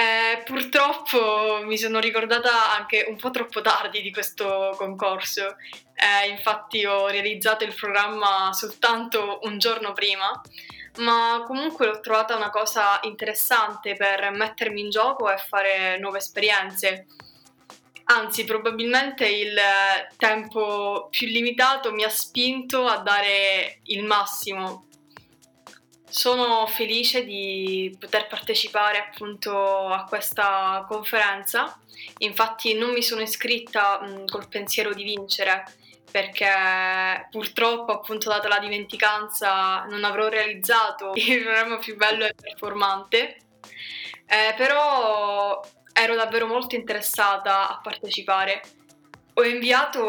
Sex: female